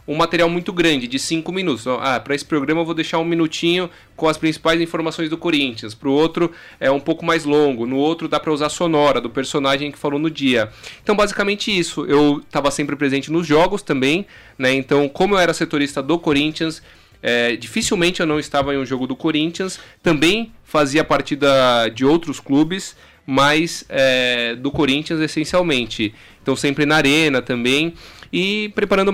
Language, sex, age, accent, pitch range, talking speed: Portuguese, male, 20-39, Brazilian, 135-175 Hz, 180 wpm